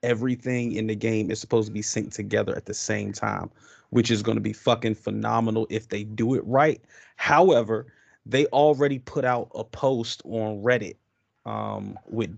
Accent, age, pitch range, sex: American, 20-39, 110-125 Hz, male